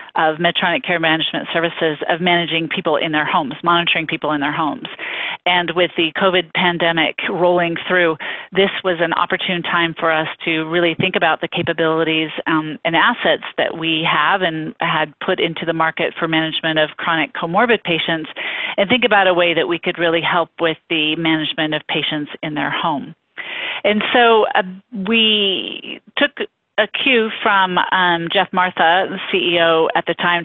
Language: English